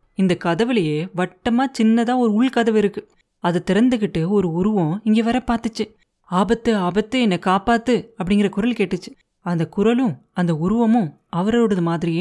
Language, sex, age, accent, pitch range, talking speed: Tamil, female, 30-49, native, 180-235 Hz, 135 wpm